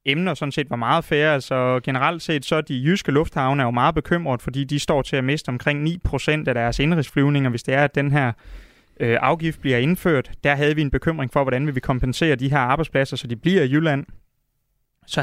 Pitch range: 130-155 Hz